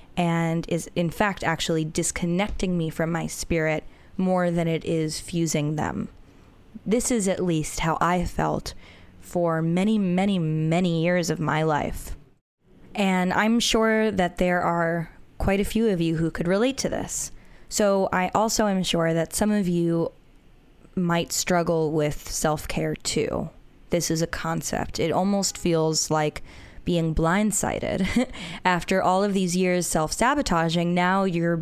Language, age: English, 10-29